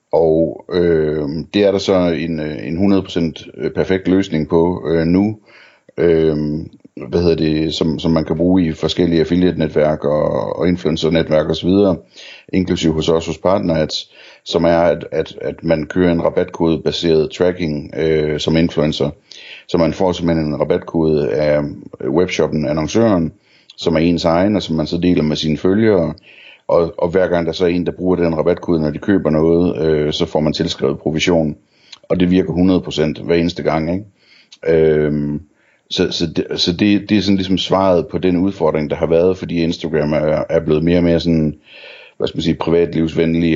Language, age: Danish, 60-79